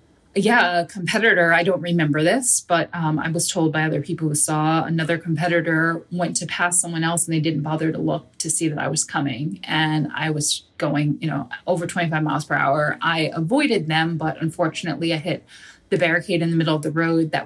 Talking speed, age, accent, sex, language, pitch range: 215 wpm, 20-39, American, female, English, 155-170 Hz